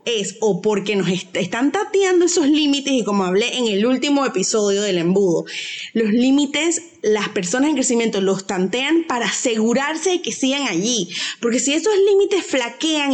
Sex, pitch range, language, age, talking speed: female, 235-325 Hz, Spanish, 20-39, 165 wpm